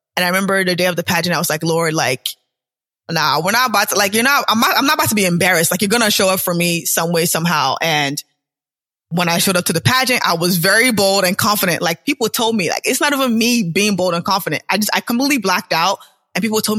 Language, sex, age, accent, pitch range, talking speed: English, female, 20-39, American, 165-200 Hz, 270 wpm